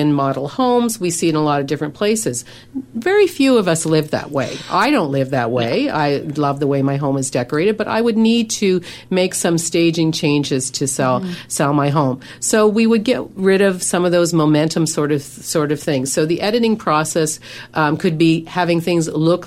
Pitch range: 150-195 Hz